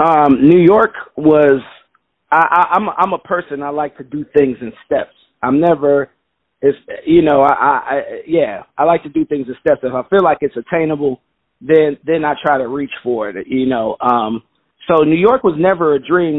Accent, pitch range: American, 125-160 Hz